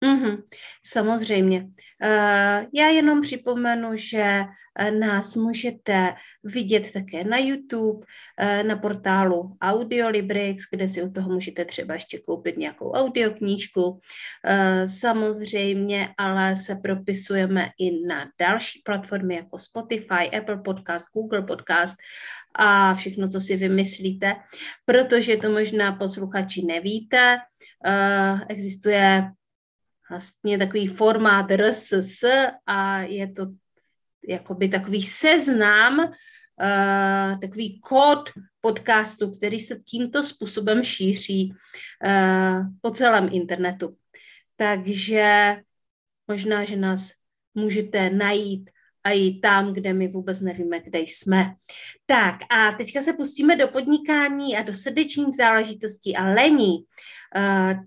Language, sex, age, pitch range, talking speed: Czech, female, 30-49, 190-220 Hz, 105 wpm